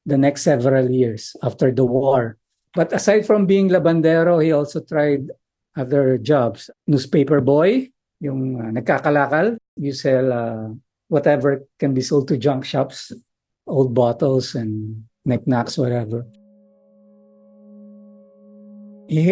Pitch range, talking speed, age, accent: 125-180 Hz, 120 wpm, 50-69, native